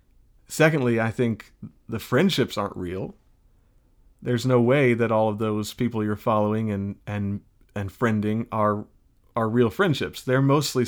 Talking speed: 150 wpm